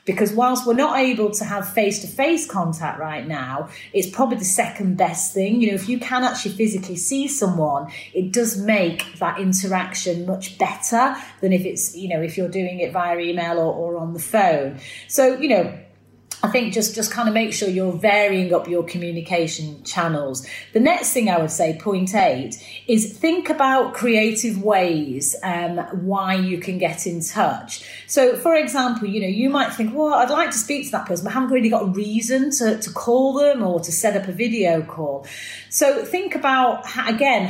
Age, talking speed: 30-49, 195 wpm